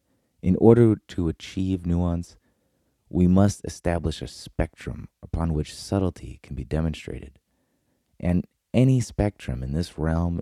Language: English